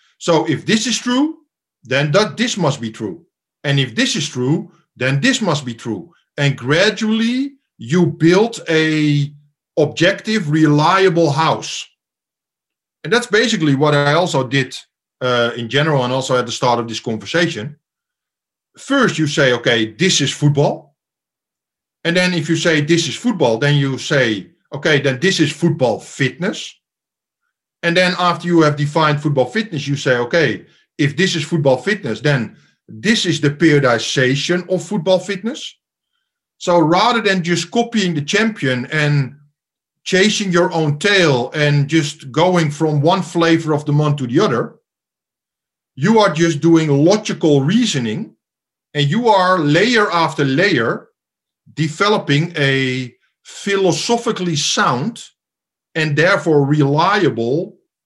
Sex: male